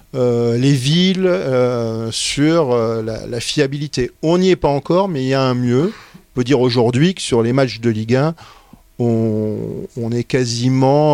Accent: French